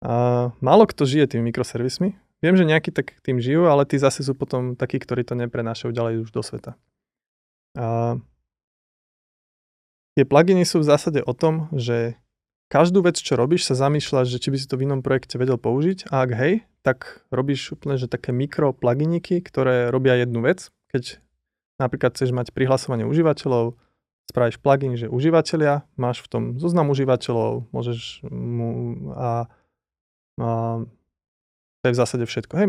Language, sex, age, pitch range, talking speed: Slovak, male, 20-39, 120-145 Hz, 160 wpm